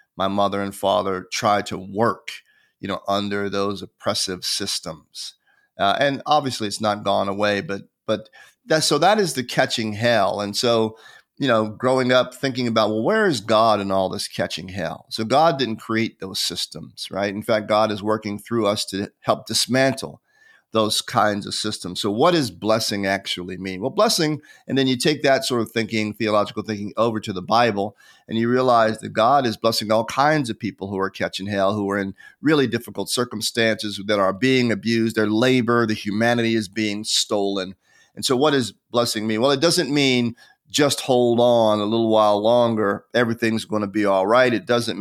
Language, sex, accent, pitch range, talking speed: English, male, American, 105-125 Hz, 195 wpm